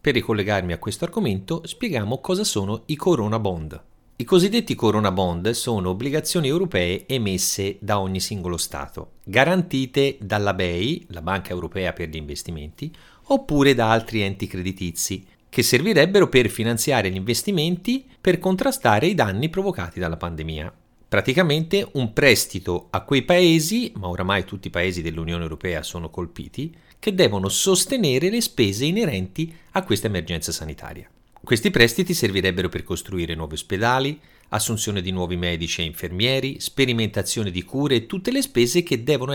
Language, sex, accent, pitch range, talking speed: Italian, male, native, 90-140 Hz, 150 wpm